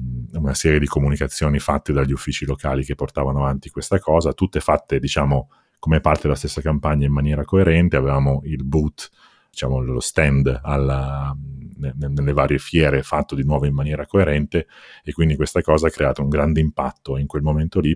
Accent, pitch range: native, 65-75 Hz